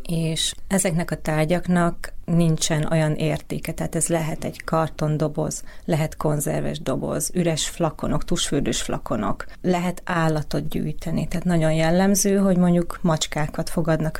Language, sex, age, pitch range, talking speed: Hungarian, female, 30-49, 165-185 Hz, 125 wpm